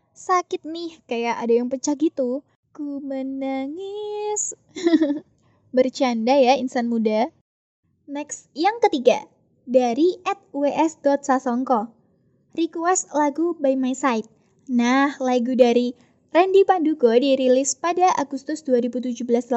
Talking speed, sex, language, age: 100 wpm, female, Indonesian, 10-29